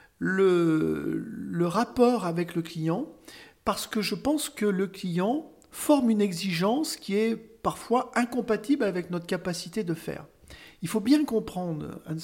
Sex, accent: male, French